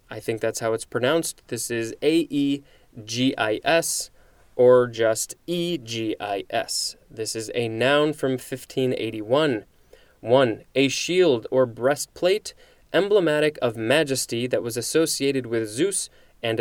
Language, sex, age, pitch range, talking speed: English, male, 20-39, 115-150 Hz, 150 wpm